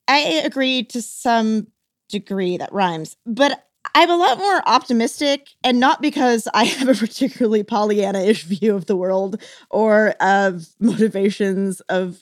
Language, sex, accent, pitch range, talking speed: English, female, American, 195-245 Hz, 140 wpm